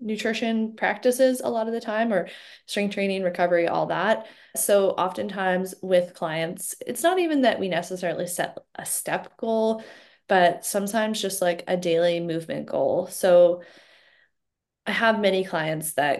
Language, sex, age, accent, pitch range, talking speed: English, female, 20-39, American, 170-210 Hz, 150 wpm